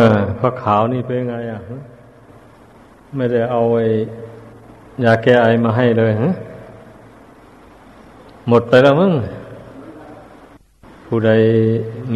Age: 60-79